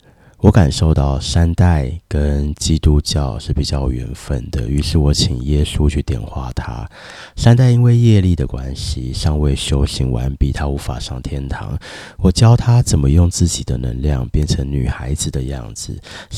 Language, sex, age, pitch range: Chinese, male, 30-49, 70-100 Hz